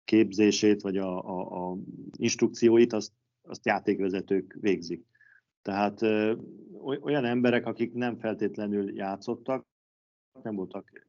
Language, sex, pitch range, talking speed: Hungarian, male, 100-120 Hz, 110 wpm